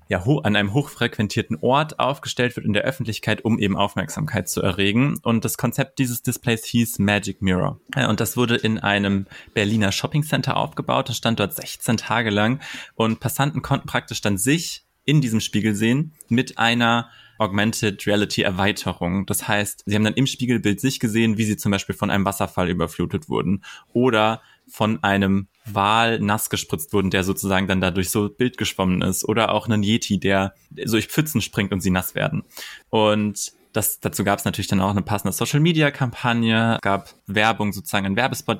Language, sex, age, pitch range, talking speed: German, male, 20-39, 100-115 Hz, 175 wpm